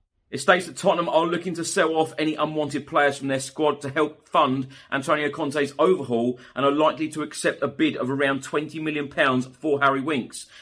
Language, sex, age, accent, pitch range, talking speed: English, male, 30-49, British, 125-150 Hz, 200 wpm